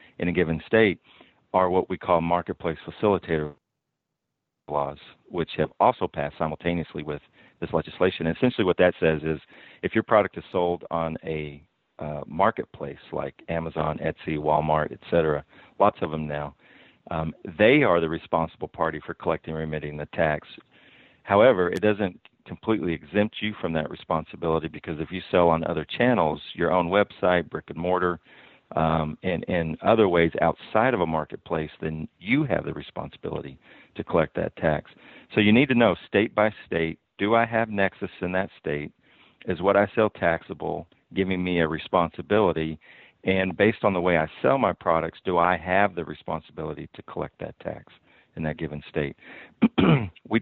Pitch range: 80-95 Hz